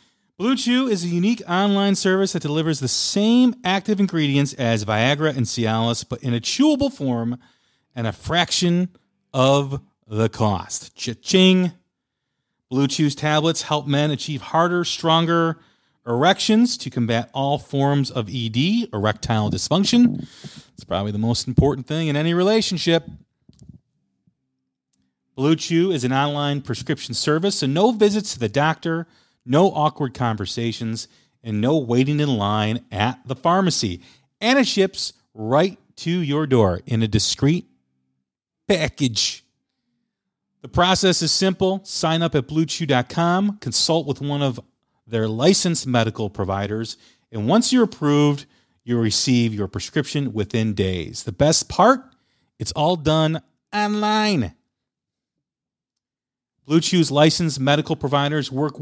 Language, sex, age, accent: English, male, 40-59, American